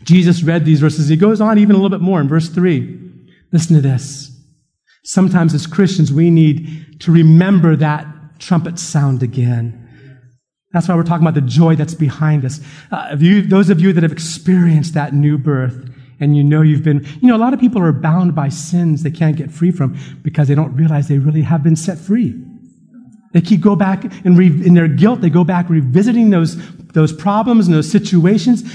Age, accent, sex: 40-59, American, male